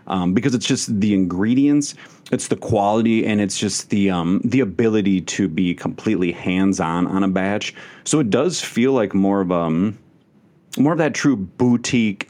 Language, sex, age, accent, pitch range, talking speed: English, male, 30-49, American, 95-120 Hz, 175 wpm